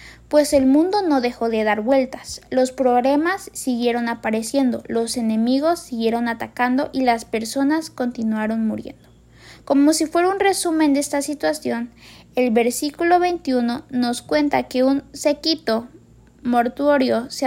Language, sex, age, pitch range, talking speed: Spanish, female, 10-29, 230-285 Hz, 135 wpm